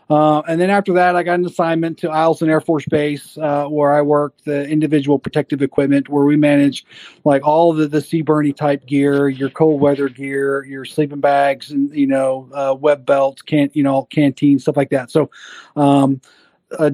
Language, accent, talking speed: English, American, 195 wpm